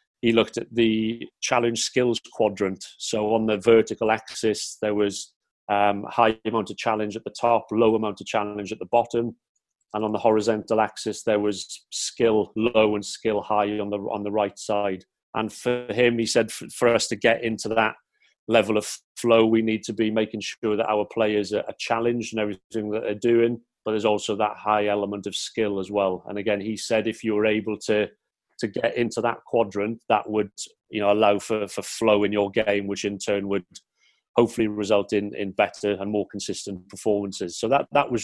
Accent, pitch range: British, 105-115 Hz